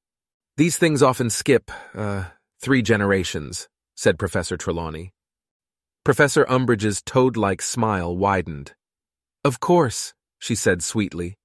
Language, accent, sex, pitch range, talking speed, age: Italian, American, male, 90-125 Hz, 105 wpm, 30-49